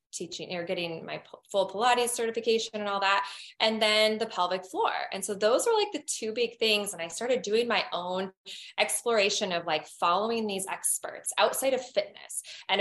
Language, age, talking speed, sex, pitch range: English, 20-39, 185 wpm, female, 185-235 Hz